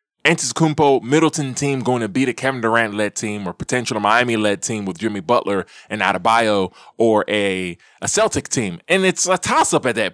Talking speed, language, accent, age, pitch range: 190 wpm, English, American, 20-39, 115-160 Hz